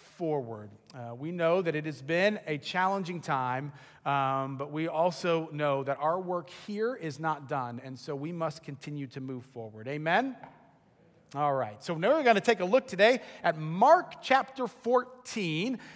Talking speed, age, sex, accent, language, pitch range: 175 wpm, 40-59, male, American, English, 165-230 Hz